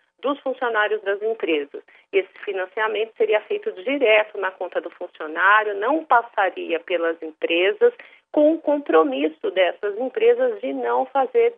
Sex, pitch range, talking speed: female, 195-275 Hz, 130 wpm